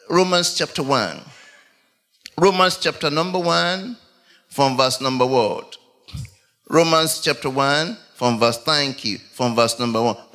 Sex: male